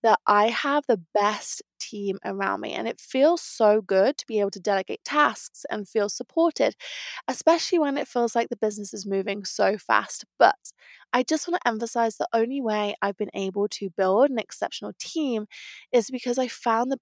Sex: female